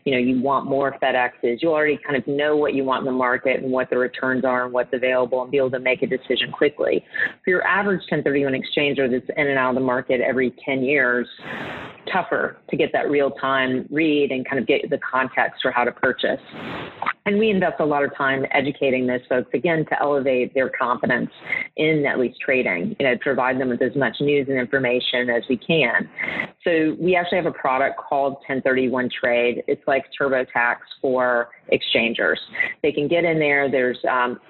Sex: female